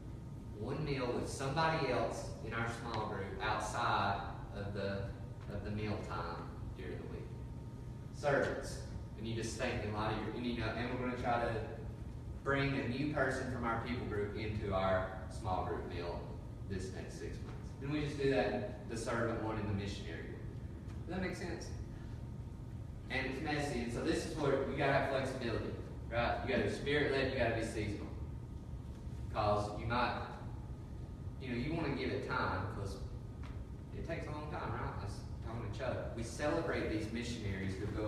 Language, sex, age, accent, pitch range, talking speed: English, male, 30-49, American, 105-125 Hz, 190 wpm